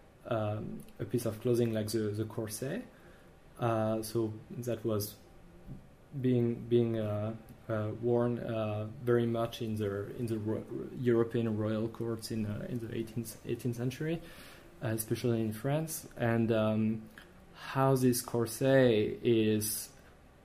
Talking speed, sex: 135 wpm, male